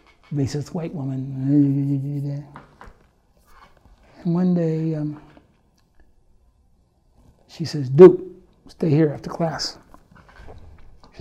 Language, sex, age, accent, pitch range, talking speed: English, male, 60-79, American, 140-160 Hz, 80 wpm